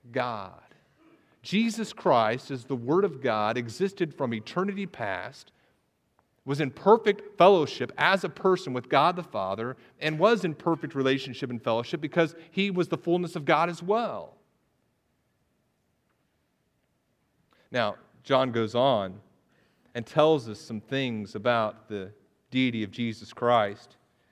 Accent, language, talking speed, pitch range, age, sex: American, English, 135 wpm, 125-165 Hz, 40-59, male